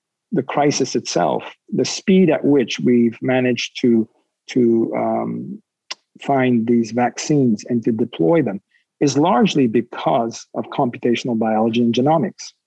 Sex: male